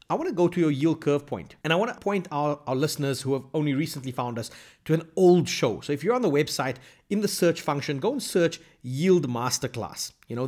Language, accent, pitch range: English, South African, 135-170 Hz